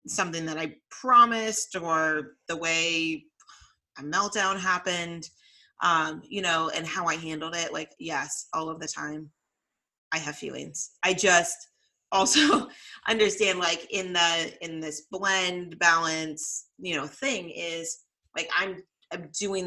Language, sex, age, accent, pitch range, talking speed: English, female, 30-49, American, 155-180 Hz, 140 wpm